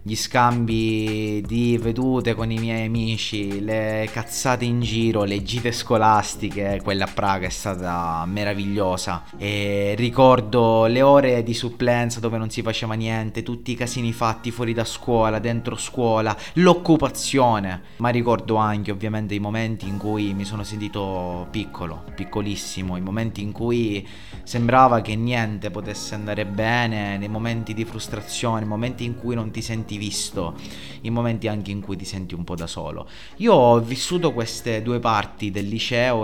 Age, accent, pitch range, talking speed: 30-49, native, 100-120 Hz, 160 wpm